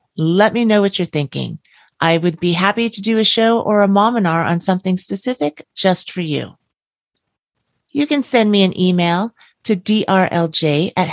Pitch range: 155-205 Hz